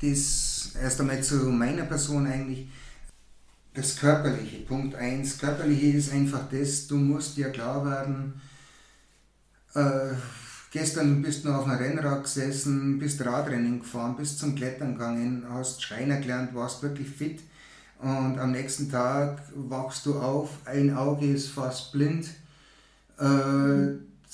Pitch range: 130-145 Hz